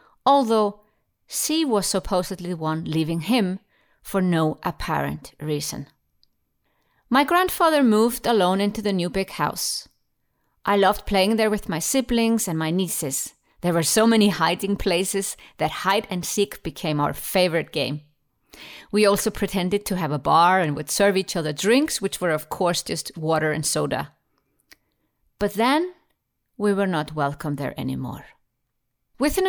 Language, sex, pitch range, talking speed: English, female, 160-210 Hz, 155 wpm